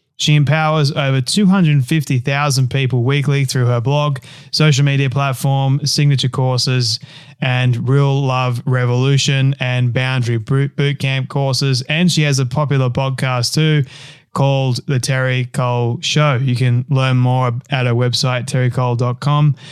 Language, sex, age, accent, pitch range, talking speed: English, male, 20-39, Australian, 130-155 Hz, 130 wpm